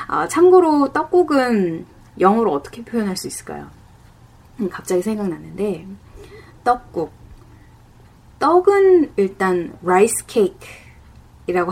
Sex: female